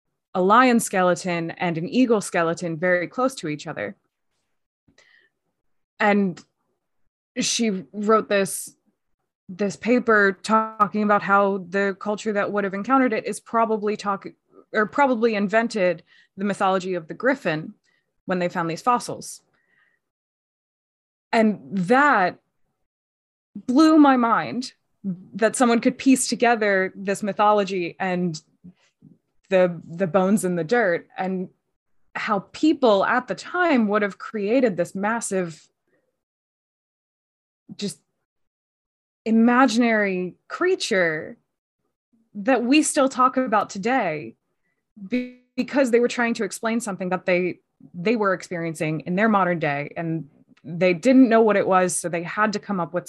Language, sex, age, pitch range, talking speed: English, female, 20-39, 180-235 Hz, 130 wpm